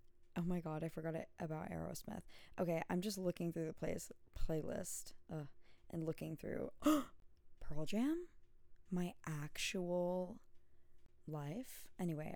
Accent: American